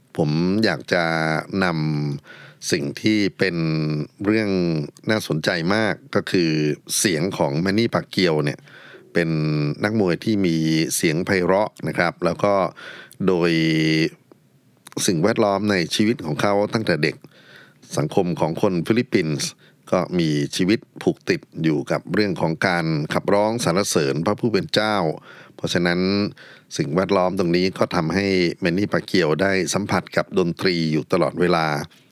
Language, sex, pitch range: Thai, male, 80-100 Hz